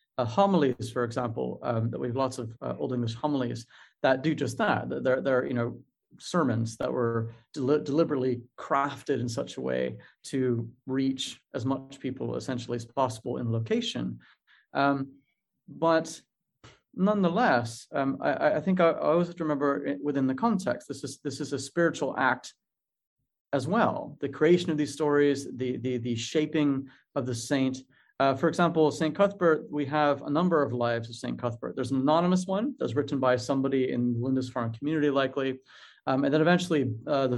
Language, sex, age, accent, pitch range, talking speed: English, male, 30-49, American, 125-150 Hz, 180 wpm